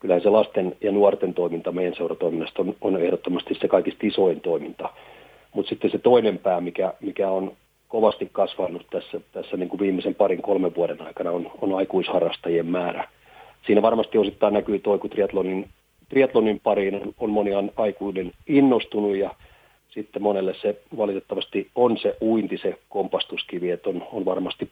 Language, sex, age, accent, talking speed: Finnish, male, 40-59, native, 160 wpm